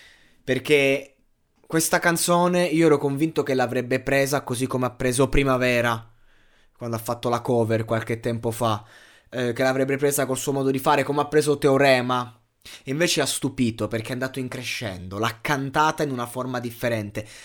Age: 20-39